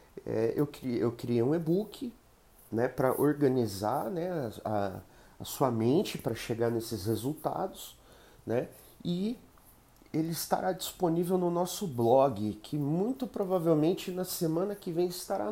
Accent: Brazilian